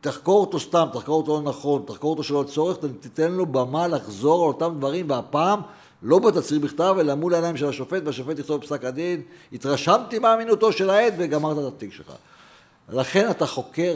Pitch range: 140-180 Hz